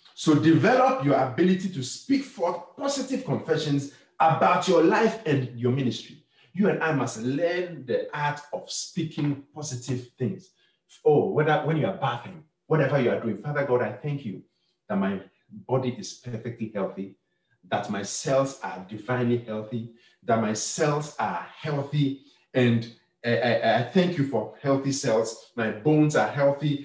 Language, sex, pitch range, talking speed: English, male, 120-165 Hz, 160 wpm